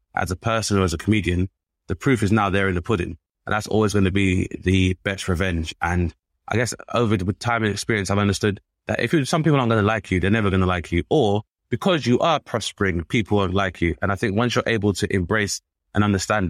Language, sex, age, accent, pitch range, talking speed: English, male, 20-39, British, 95-110 Hz, 245 wpm